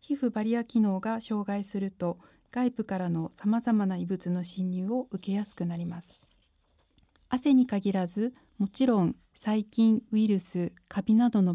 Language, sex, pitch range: Japanese, female, 180-235 Hz